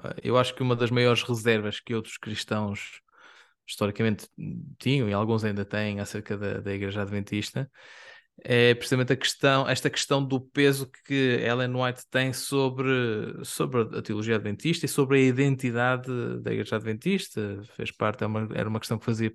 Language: Portuguese